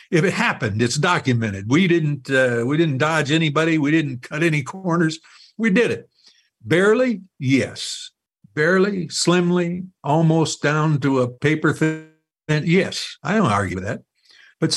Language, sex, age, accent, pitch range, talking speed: English, male, 60-79, American, 130-180 Hz, 155 wpm